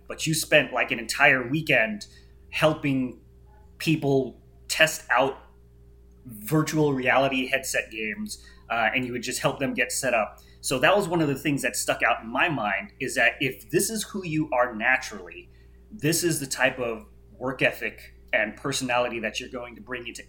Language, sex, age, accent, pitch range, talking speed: English, male, 30-49, American, 110-140 Hz, 185 wpm